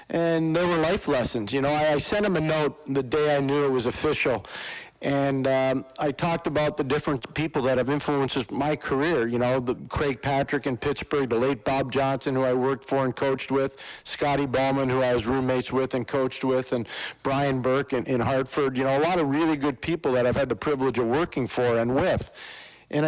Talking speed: 220 wpm